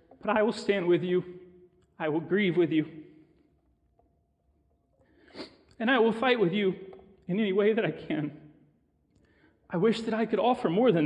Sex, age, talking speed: male, 40-59, 170 wpm